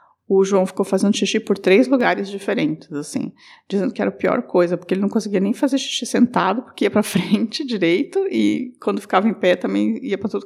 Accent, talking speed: Brazilian, 220 wpm